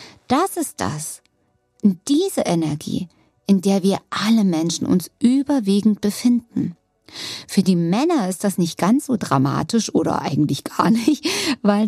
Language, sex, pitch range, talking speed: German, female, 170-215 Hz, 135 wpm